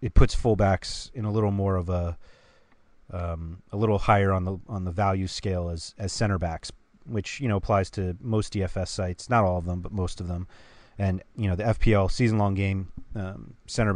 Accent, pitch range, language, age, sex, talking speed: American, 90-105 Hz, English, 30-49, male, 210 wpm